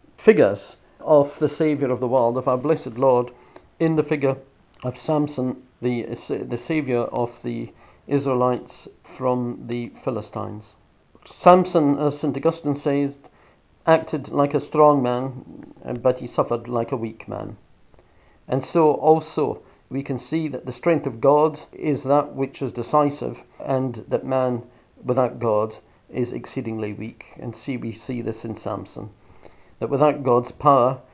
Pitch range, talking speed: 120-145 Hz, 150 wpm